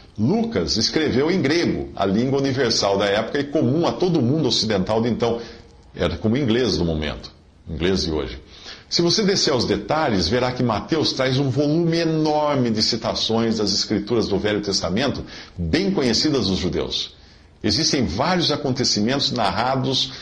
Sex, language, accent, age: male, Portuguese, Brazilian, 50-69